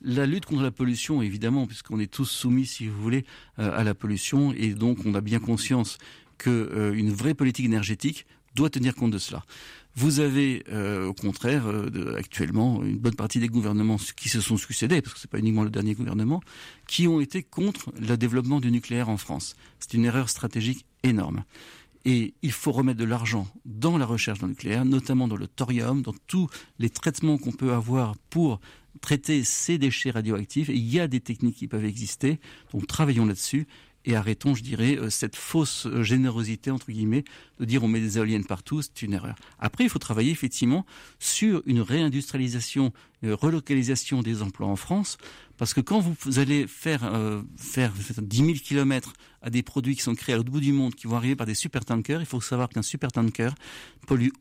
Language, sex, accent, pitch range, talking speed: French, male, French, 110-140 Hz, 200 wpm